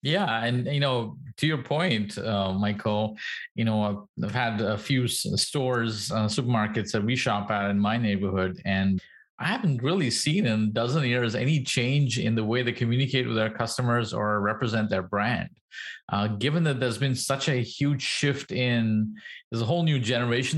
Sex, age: male, 30-49